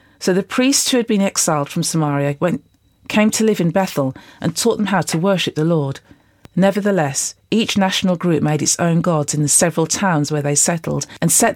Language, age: English, 40-59